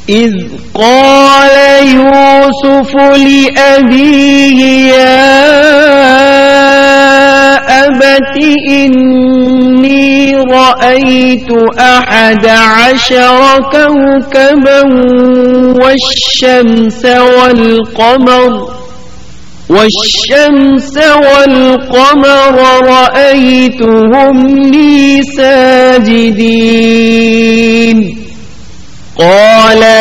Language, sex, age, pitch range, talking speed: Urdu, male, 40-59, 235-275 Hz, 35 wpm